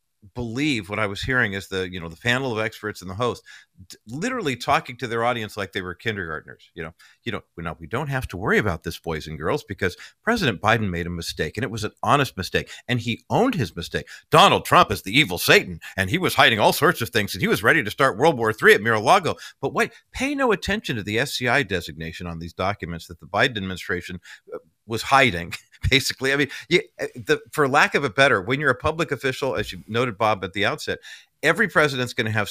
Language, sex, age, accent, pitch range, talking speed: English, male, 50-69, American, 95-135 Hz, 240 wpm